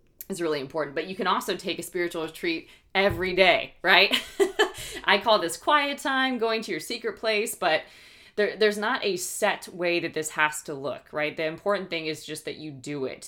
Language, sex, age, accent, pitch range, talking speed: English, female, 20-39, American, 155-195 Hz, 205 wpm